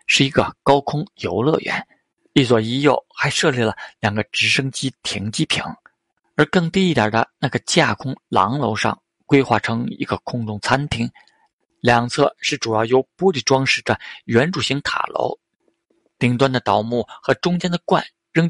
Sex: male